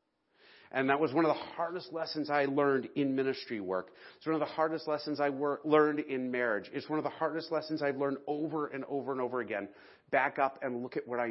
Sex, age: male, 40-59